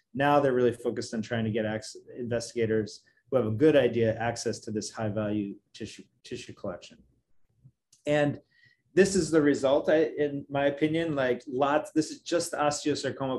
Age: 30-49